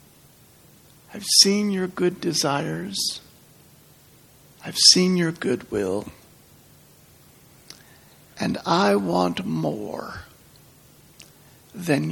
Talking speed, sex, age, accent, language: 70 wpm, male, 60-79, American, English